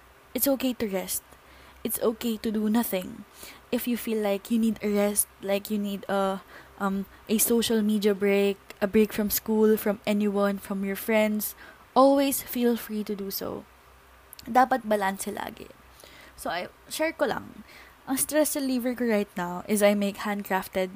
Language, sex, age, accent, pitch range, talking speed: Filipino, female, 20-39, native, 200-245 Hz, 170 wpm